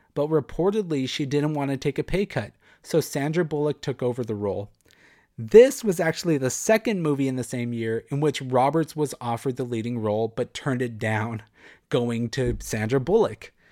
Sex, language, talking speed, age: male, English, 190 wpm, 30-49